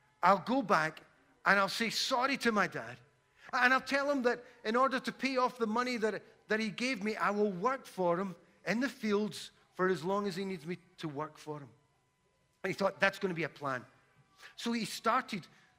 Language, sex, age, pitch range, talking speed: English, male, 40-59, 175-260 Hz, 215 wpm